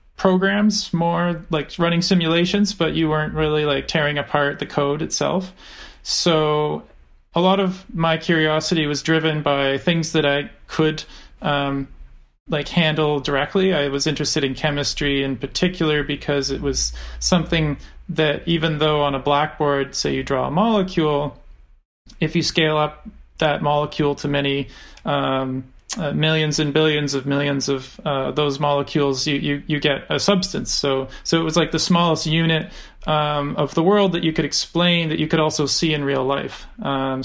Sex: male